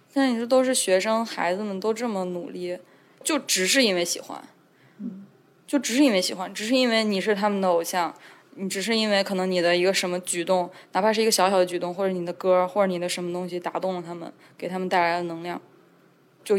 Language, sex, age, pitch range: Chinese, female, 20-39, 180-220 Hz